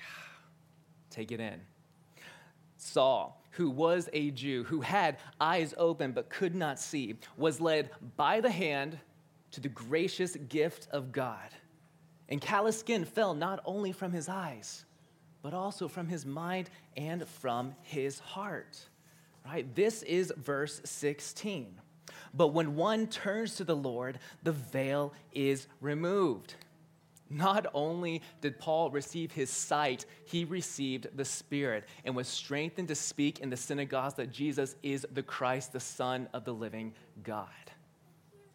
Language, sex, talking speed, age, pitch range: English, male, 140 wpm, 20-39, 135-165 Hz